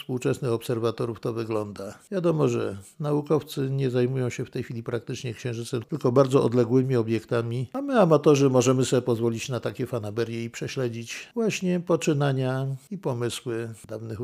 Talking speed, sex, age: 150 wpm, male, 50-69